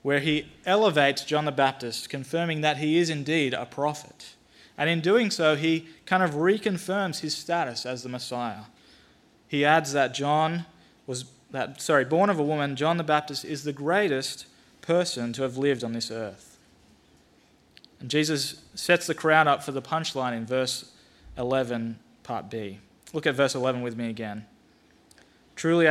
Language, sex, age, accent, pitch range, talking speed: English, male, 20-39, Australian, 120-155 Hz, 165 wpm